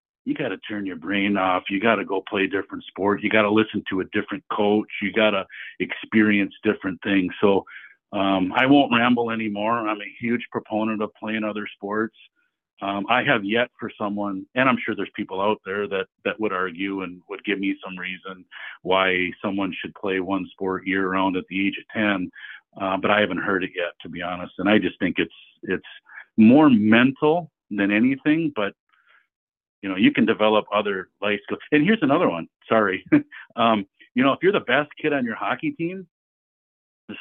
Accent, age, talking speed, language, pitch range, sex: American, 50-69, 200 wpm, English, 100-125 Hz, male